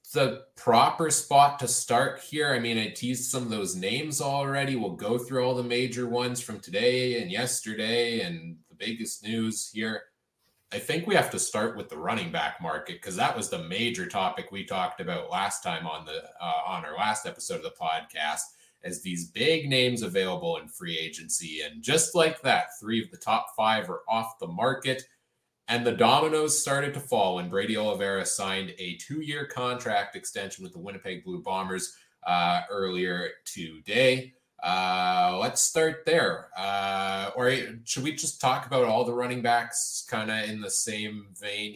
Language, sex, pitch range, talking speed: English, male, 100-130 Hz, 185 wpm